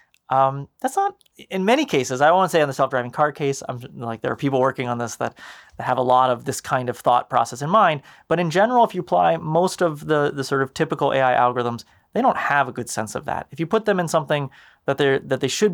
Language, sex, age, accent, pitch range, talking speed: English, male, 30-49, American, 125-160 Hz, 260 wpm